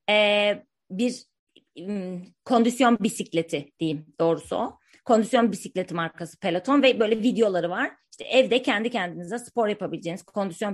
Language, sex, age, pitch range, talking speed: Turkish, female, 30-49, 175-230 Hz, 130 wpm